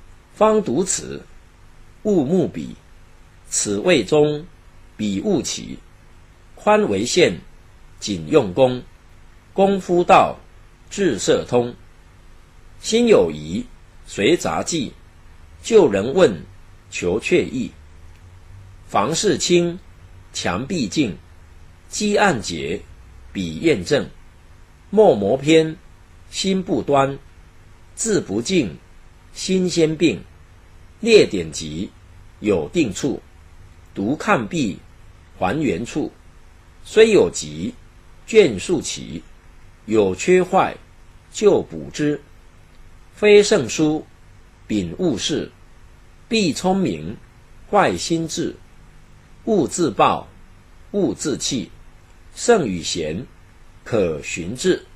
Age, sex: 50-69, male